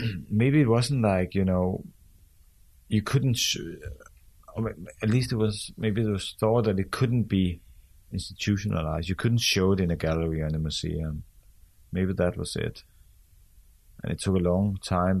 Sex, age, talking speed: male, 30-49, 170 wpm